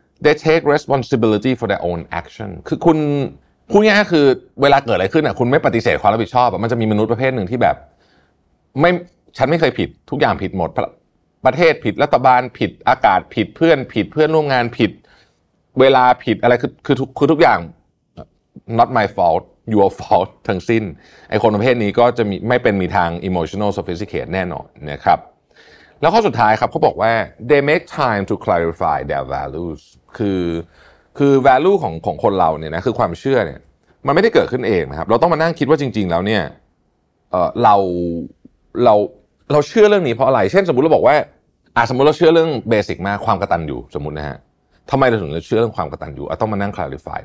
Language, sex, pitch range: Thai, male, 95-145 Hz